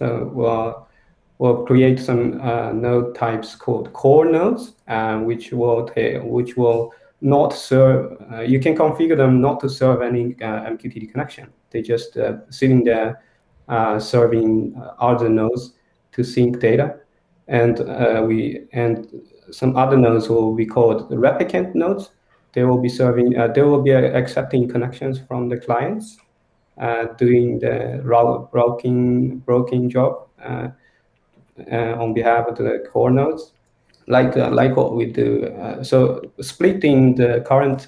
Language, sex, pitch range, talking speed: English, male, 115-130 Hz, 145 wpm